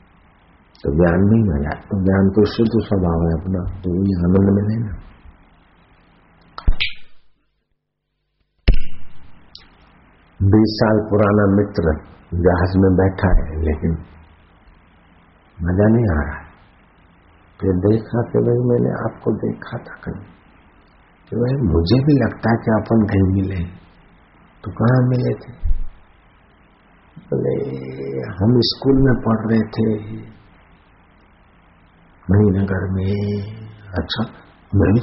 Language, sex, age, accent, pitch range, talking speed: Hindi, male, 60-79, native, 85-110 Hz, 105 wpm